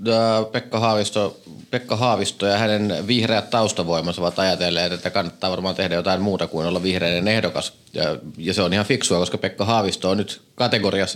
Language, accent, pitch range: Finnish, native, 95-115 Hz